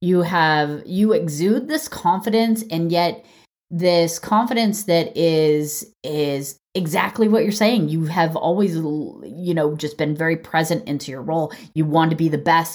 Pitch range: 160-220 Hz